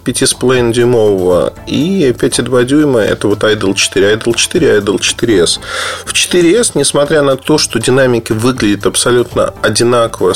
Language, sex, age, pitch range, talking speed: Russian, male, 20-39, 100-140 Hz, 120 wpm